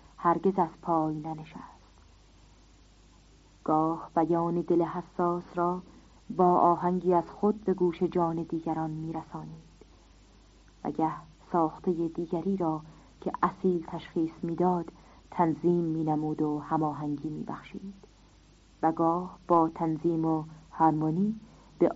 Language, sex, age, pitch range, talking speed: Persian, female, 40-59, 160-180 Hz, 120 wpm